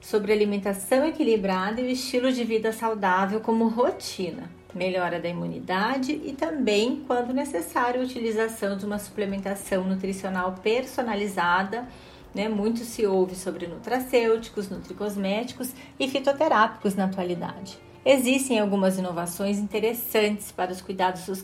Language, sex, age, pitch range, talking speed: Portuguese, female, 30-49, 195-250 Hz, 120 wpm